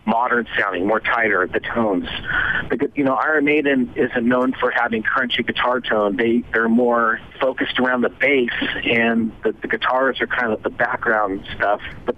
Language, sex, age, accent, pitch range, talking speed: Hebrew, male, 40-59, American, 110-135 Hz, 175 wpm